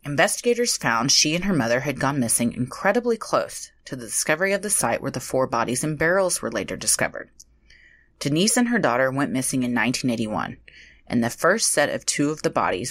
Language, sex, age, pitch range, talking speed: English, female, 30-49, 125-185 Hz, 200 wpm